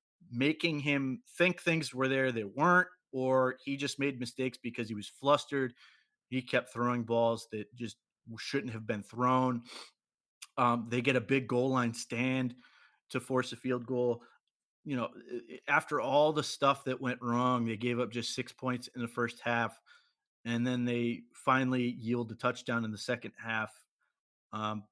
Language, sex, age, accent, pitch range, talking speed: English, male, 30-49, American, 115-130 Hz, 170 wpm